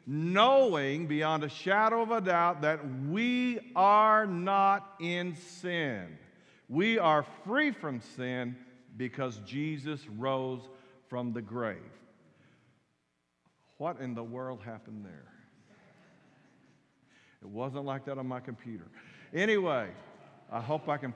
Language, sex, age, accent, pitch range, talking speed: English, male, 50-69, American, 140-210 Hz, 120 wpm